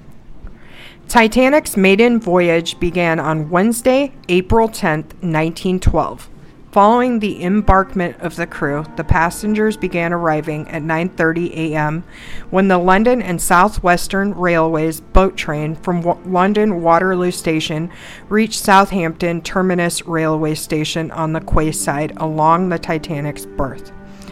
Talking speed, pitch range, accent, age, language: 115 wpm, 160-190 Hz, American, 50-69, English